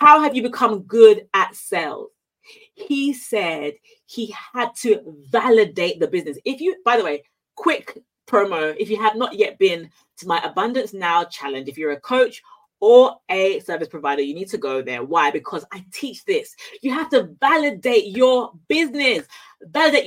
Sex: female